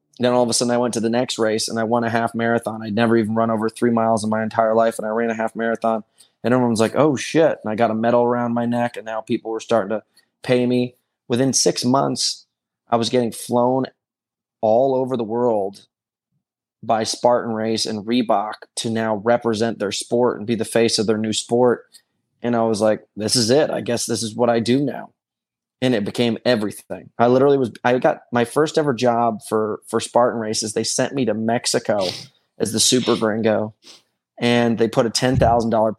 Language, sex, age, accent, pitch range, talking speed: English, male, 20-39, American, 110-120 Hz, 220 wpm